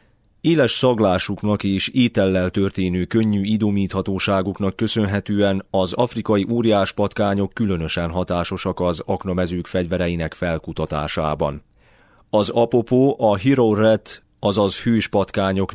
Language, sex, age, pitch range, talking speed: Hungarian, male, 30-49, 90-110 Hz, 90 wpm